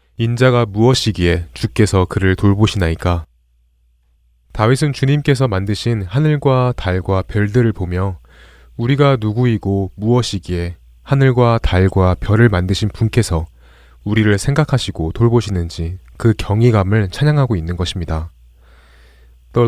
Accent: native